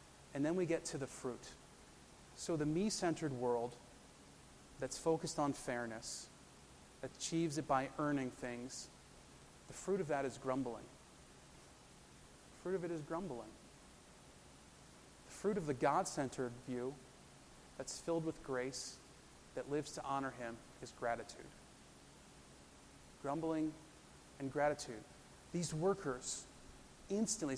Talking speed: 120 wpm